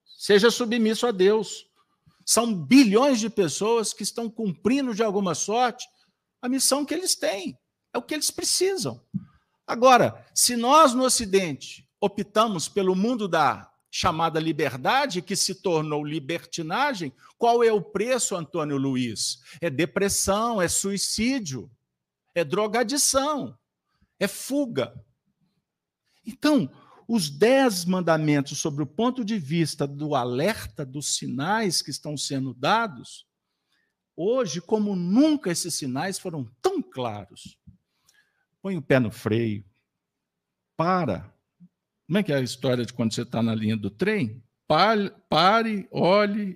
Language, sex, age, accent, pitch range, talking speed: Portuguese, male, 50-69, Brazilian, 155-230 Hz, 130 wpm